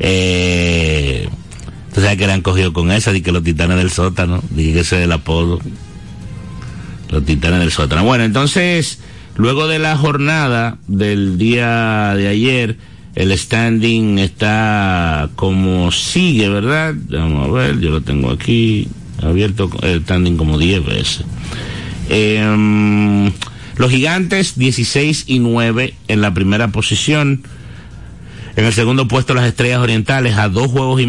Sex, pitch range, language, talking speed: male, 95-120 Hz, Spanish, 140 wpm